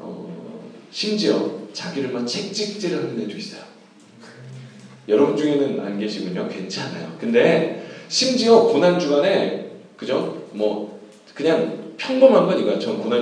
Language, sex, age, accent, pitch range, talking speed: English, male, 40-59, Korean, 140-225 Hz, 105 wpm